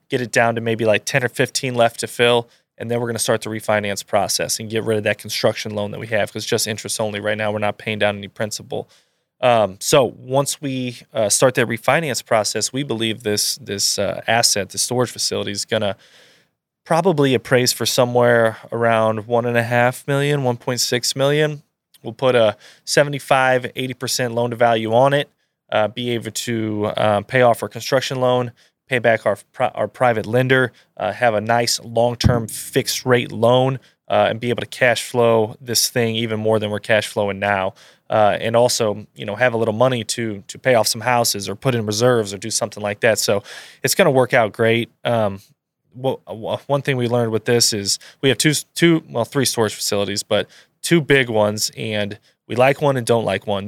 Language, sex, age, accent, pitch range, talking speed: English, male, 20-39, American, 110-125 Hz, 200 wpm